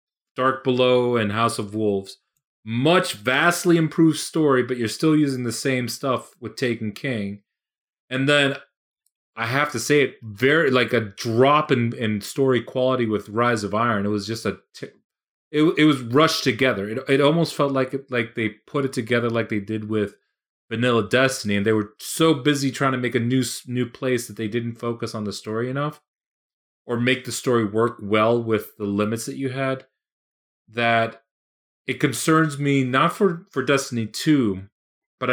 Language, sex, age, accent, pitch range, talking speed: English, male, 30-49, American, 105-130 Hz, 185 wpm